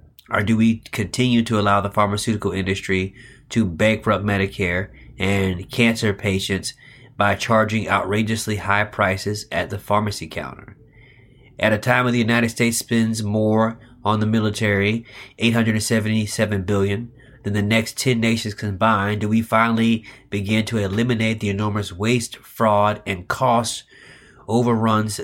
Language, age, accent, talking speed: English, 30-49, American, 135 wpm